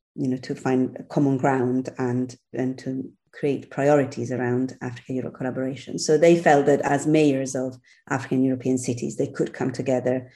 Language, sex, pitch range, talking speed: German, female, 130-150 Hz, 160 wpm